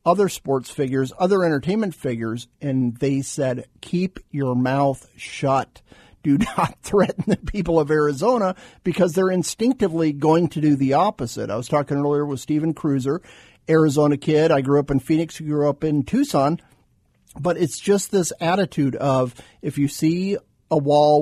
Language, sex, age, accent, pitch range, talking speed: English, male, 50-69, American, 130-160 Hz, 160 wpm